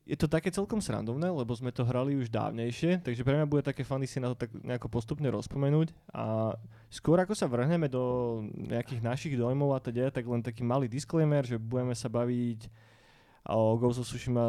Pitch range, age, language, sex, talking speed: 115-130 Hz, 20-39, Slovak, male, 200 wpm